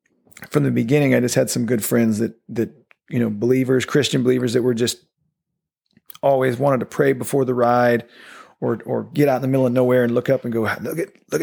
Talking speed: 225 wpm